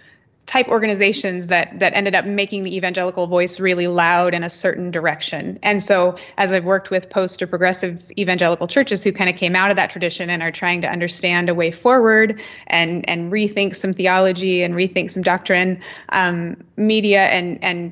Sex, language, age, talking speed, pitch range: female, English, 20-39, 190 wpm, 175-200 Hz